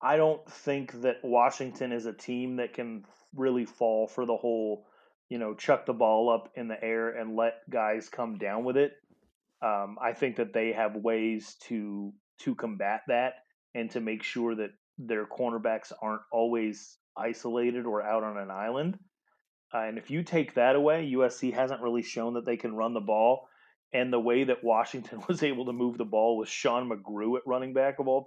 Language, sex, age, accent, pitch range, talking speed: English, male, 30-49, American, 110-130 Hz, 195 wpm